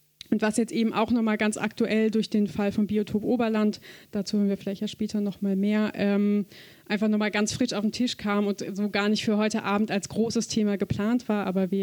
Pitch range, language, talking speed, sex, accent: 190-215 Hz, German, 230 wpm, female, German